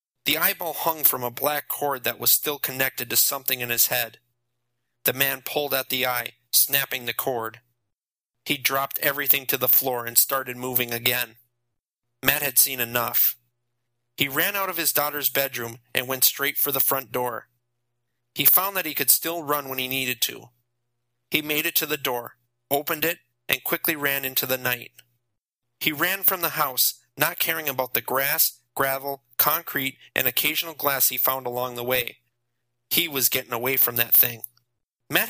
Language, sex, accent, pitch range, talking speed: English, male, American, 120-145 Hz, 180 wpm